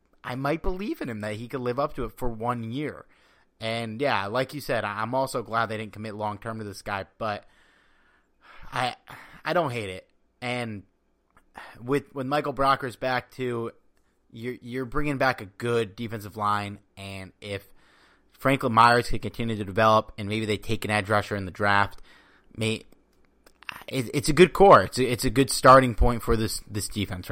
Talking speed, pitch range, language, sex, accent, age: 190 wpm, 105-125 Hz, English, male, American, 30-49